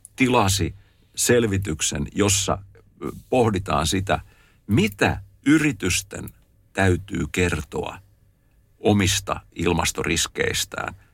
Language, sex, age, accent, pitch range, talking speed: Finnish, male, 60-79, native, 90-115 Hz, 60 wpm